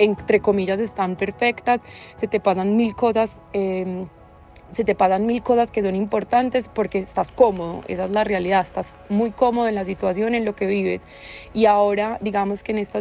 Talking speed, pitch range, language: 190 wpm, 195-215 Hz, Spanish